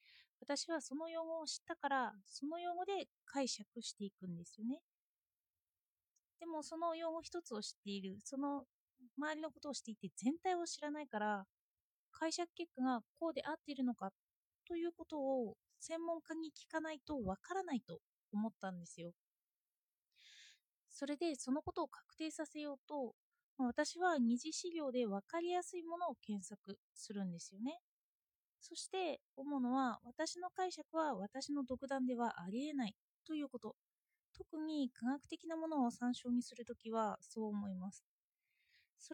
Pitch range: 225-320 Hz